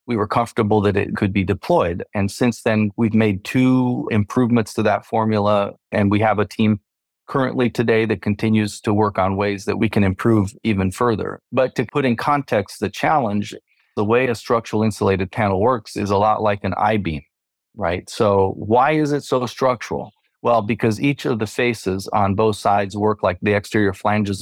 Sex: male